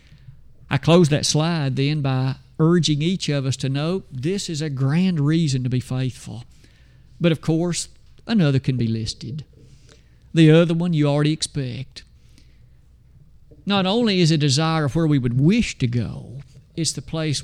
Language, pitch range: English, 135-190 Hz